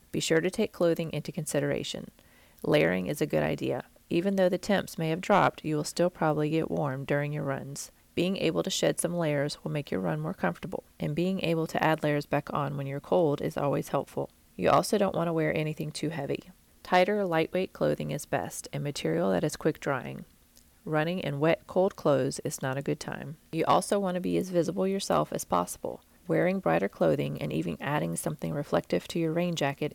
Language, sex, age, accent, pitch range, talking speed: English, female, 30-49, American, 145-175 Hz, 210 wpm